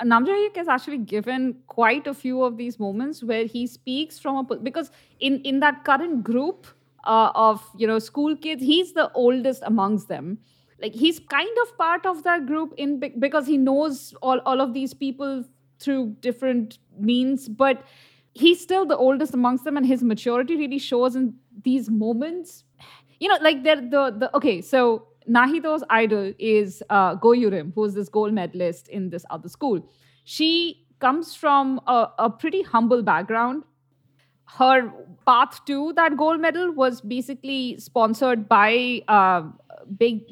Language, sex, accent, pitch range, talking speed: English, female, Indian, 215-280 Hz, 160 wpm